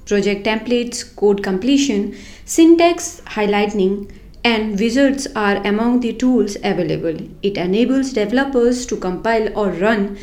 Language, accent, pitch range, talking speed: English, Indian, 205-270 Hz, 115 wpm